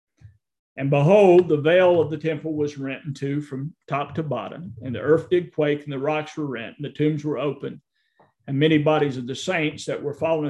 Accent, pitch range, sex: American, 140-165 Hz, male